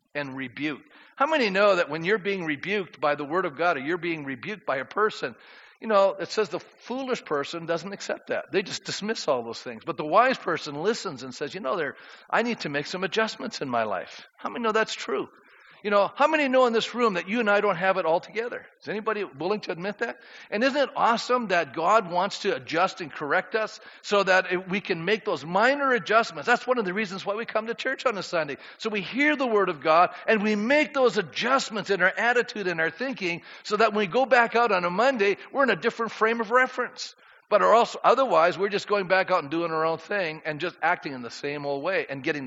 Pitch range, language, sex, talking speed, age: 170-235 Hz, English, male, 245 wpm, 50-69